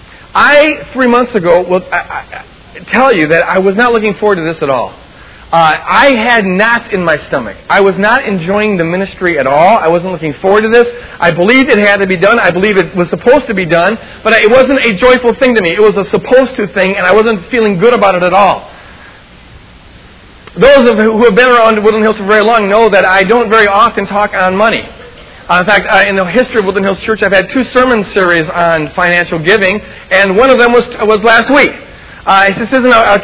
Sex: male